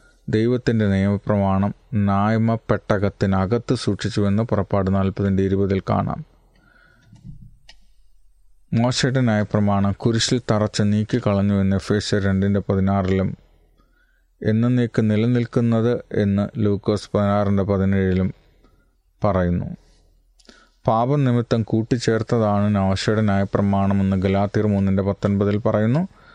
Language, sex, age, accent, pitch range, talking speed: Malayalam, male, 30-49, native, 95-115 Hz, 75 wpm